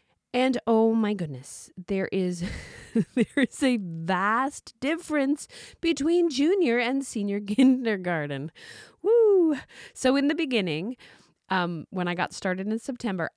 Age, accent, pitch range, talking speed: 30-49, American, 180-240 Hz, 125 wpm